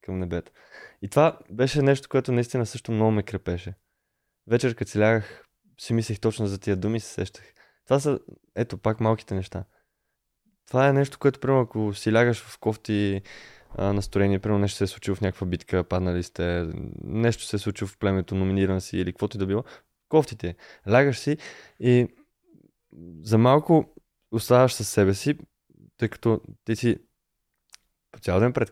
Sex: male